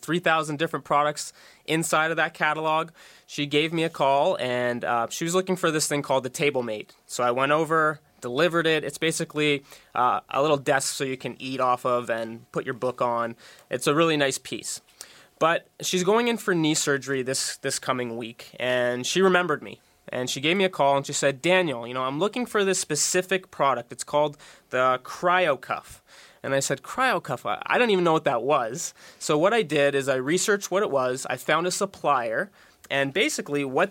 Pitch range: 130-165 Hz